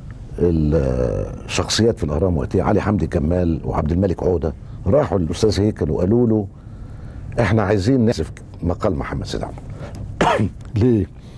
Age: 60-79